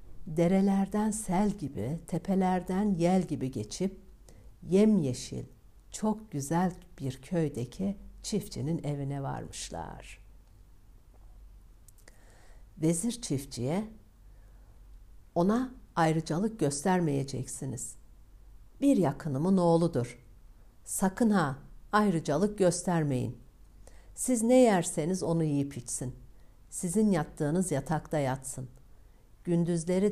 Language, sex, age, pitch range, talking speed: Turkish, female, 60-79, 115-190 Hz, 75 wpm